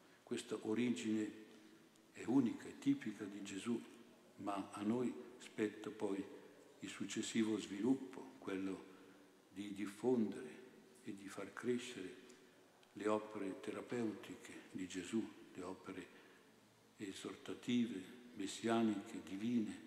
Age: 60-79